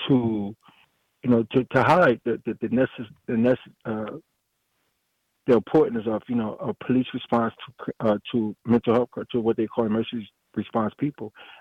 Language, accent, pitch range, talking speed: English, American, 110-130 Hz, 175 wpm